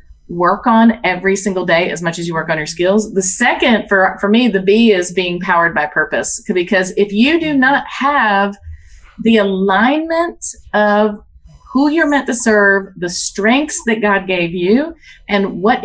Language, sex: English, female